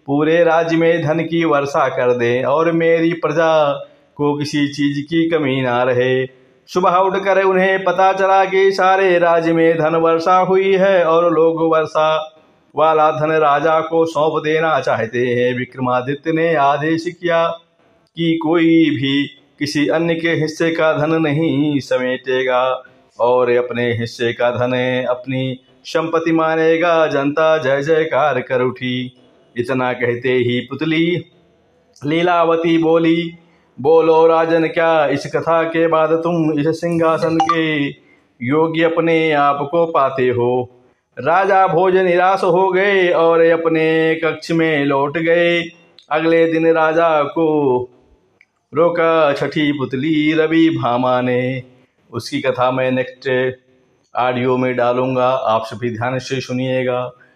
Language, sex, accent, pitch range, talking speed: Hindi, male, native, 130-165 Hz, 130 wpm